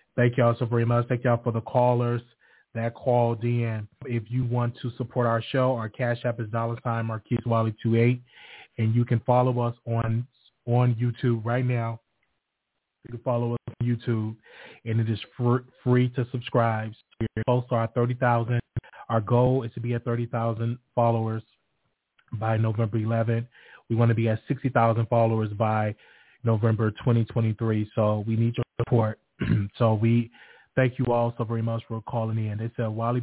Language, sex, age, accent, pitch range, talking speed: English, male, 20-39, American, 115-140 Hz, 175 wpm